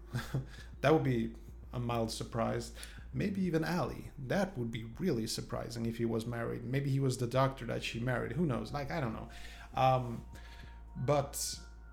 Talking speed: 170 wpm